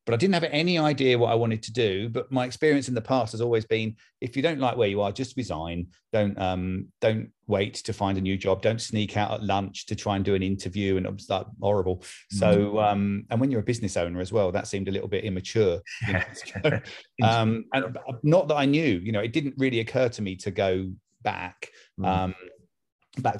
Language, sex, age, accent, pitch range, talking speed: English, male, 40-59, British, 100-125 Hz, 230 wpm